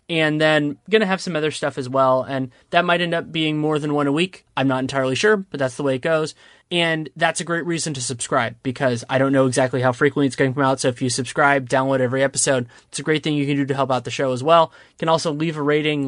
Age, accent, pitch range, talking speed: 20-39, American, 130-150 Hz, 285 wpm